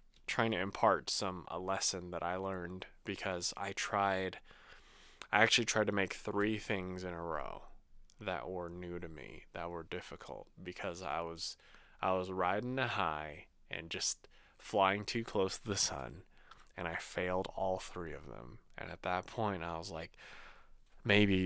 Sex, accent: male, American